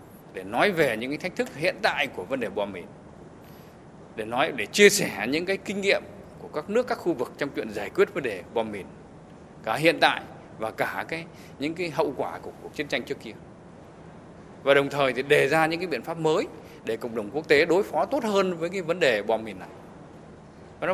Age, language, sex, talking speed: 20-39, Vietnamese, male, 230 wpm